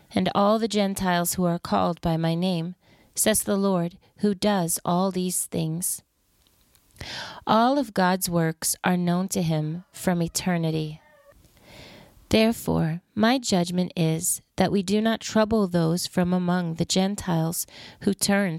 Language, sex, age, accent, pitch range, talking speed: English, female, 40-59, American, 170-205 Hz, 140 wpm